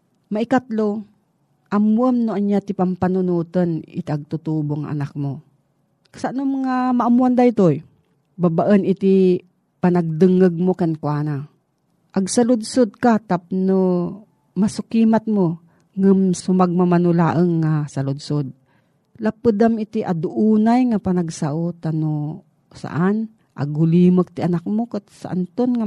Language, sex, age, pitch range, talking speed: Filipino, female, 40-59, 160-195 Hz, 105 wpm